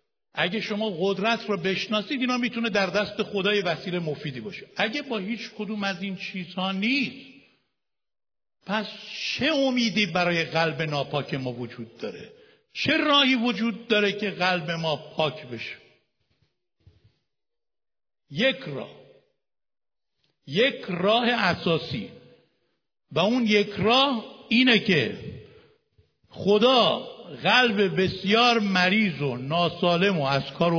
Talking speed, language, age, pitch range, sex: 115 wpm, Persian, 60-79, 155-225 Hz, male